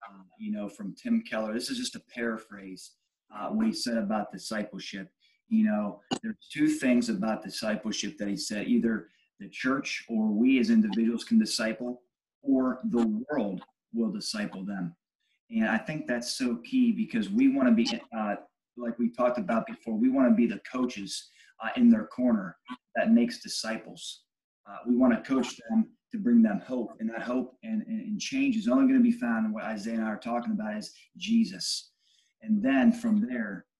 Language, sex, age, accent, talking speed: English, male, 30-49, American, 190 wpm